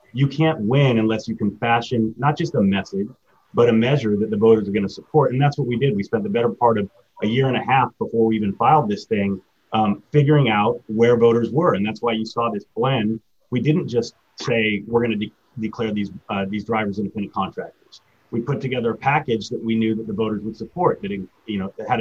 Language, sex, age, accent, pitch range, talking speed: English, male, 30-49, American, 110-130 Hz, 245 wpm